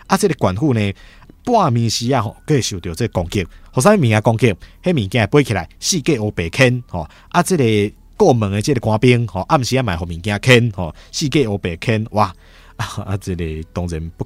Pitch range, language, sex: 85-120 Hz, Chinese, male